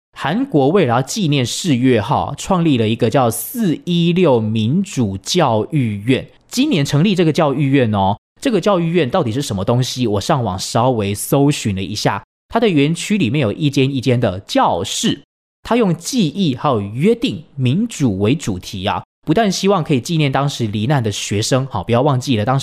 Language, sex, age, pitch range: Chinese, male, 20-39, 110-150 Hz